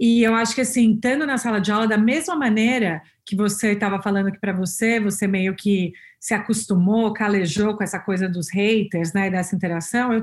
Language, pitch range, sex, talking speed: Portuguese, 195-245 Hz, female, 205 wpm